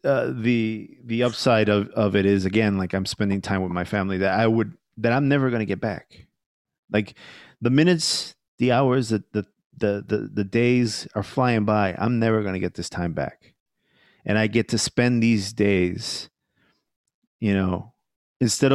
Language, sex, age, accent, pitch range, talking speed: English, male, 30-49, American, 105-125 Hz, 185 wpm